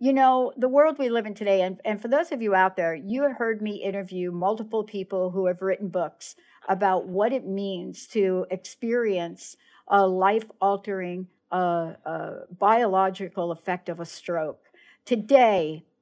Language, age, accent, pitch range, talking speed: English, 60-79, American, 180-230 Hz, 160 wpm